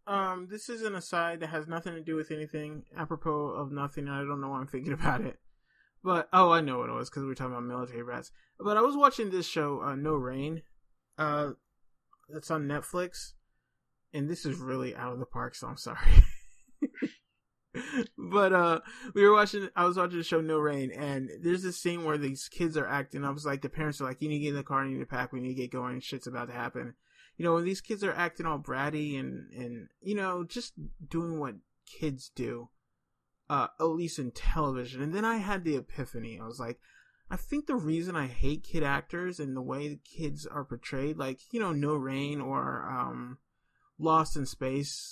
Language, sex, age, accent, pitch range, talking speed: English, male, 20-39, American, 135-170 Hz, 225 wpm